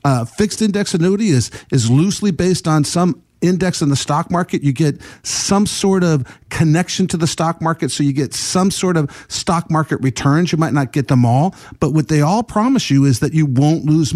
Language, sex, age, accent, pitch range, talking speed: English, male, 50-69, American, 135-185 Hz, 215 wpm